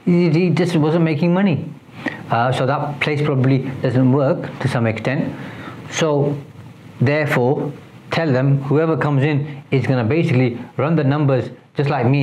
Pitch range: 125-145 Hz